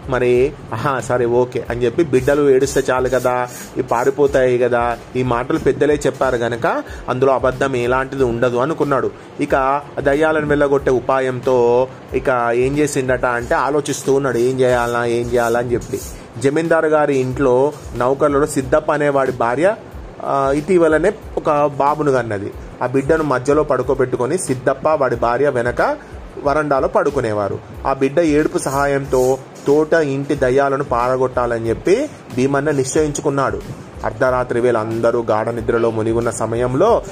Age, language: 30-49, Telugu